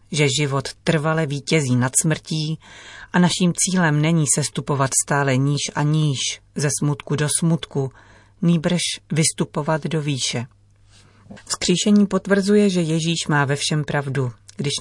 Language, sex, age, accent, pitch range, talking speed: Czech, female, 40-59, native, 130-160 Hz, 130 wpm